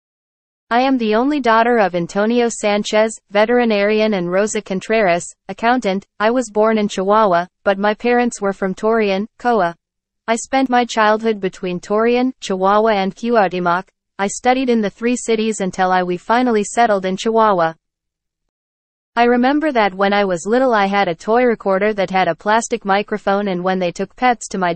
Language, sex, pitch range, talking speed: English, female, 190-230 Hz, 170 wpm